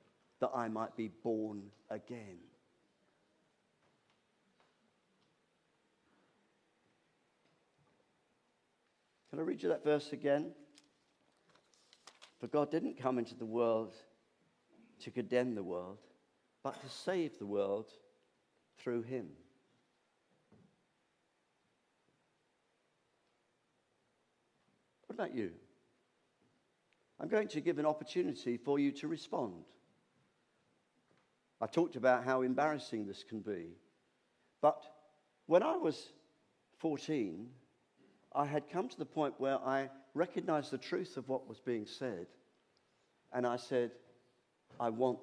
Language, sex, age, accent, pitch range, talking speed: English, male, 50-69, British, 110-150 Hz, 105 wpm